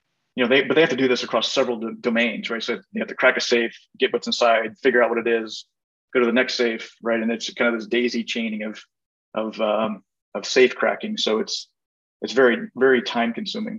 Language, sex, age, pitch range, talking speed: English, male, 30-49, 110-130 Hz, 240 wpm